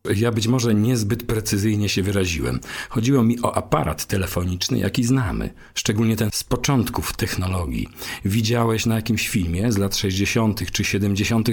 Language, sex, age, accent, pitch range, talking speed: Polish, male, 40-59, native, 95-115 Hz, 145 wpm